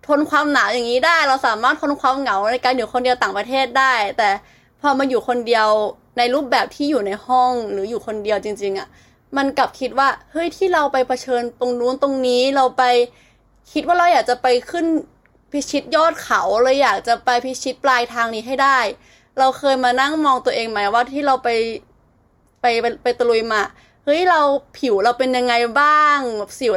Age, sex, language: 20-39, female, Thai